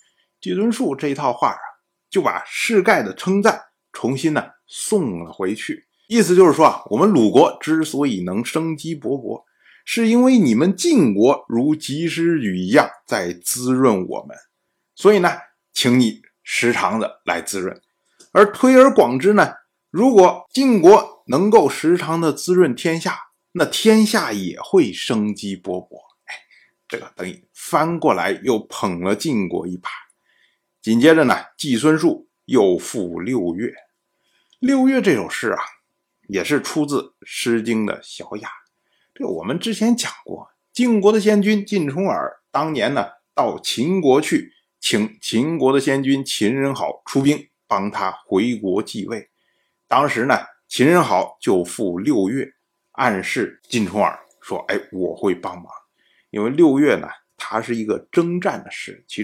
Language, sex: Chinese, male